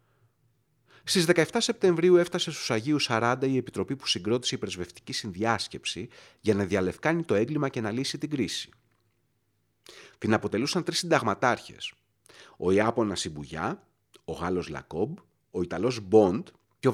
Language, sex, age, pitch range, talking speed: Greek, male, 30-49, 100-145 Hz, 140 wpm